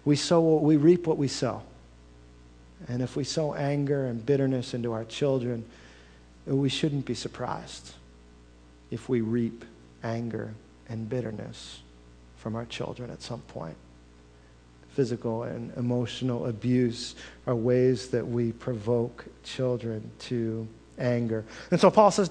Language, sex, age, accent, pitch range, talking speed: English, male, 50-69, American, 110-145 Hz, 135 wpm